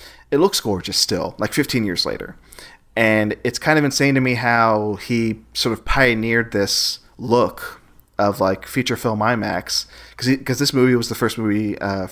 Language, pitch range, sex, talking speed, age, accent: English, 100-125 Hz, male, 175 wpm, 30-49, American